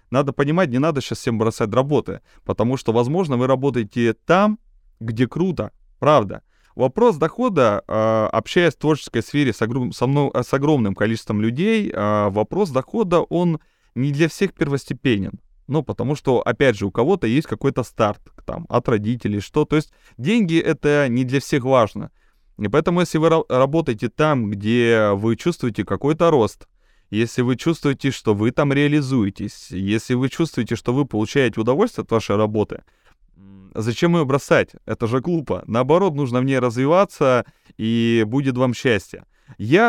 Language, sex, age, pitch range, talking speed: Russian, male, 20-39, 110-145 Hz, 160 wpm